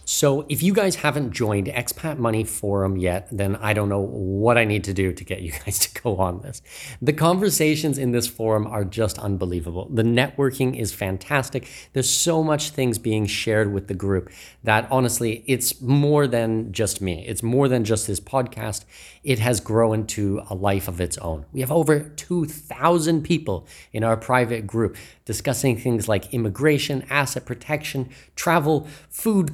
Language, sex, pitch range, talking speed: English, male, 105-145 Hz, 175 wpm